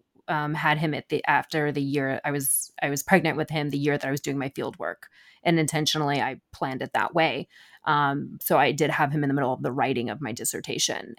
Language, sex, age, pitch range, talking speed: English, female, 30-49, 145-170 Hz, 245 wpm